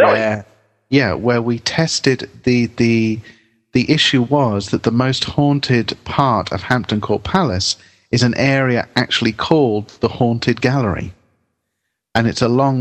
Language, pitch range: English, 100-125 Hz